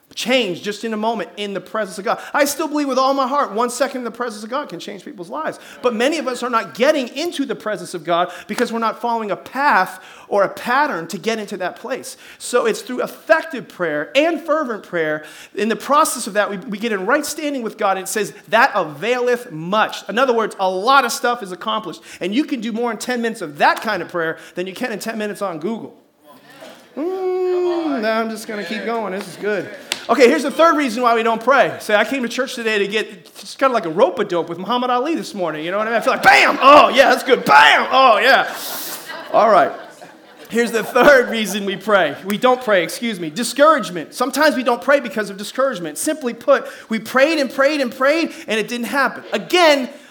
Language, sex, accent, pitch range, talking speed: English, male, American, 205-275 Hz, 235 wpm